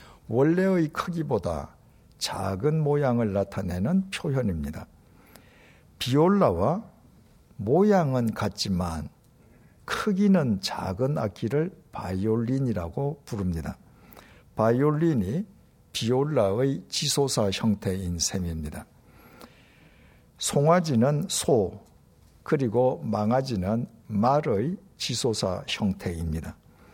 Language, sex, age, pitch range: Korean, male, 60-79, 105-165 Hz